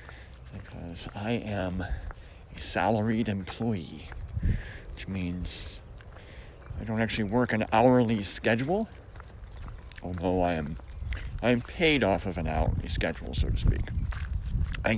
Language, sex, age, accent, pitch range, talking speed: English, male, 40-59, American, 85-110 Hz, 115 wpm